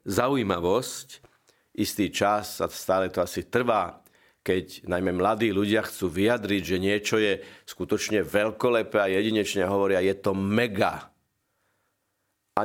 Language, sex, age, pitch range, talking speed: Slovak, male, 50-69, 100-125 Hz, 125 wpm